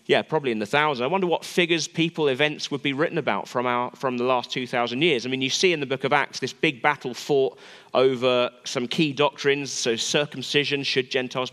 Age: 30-49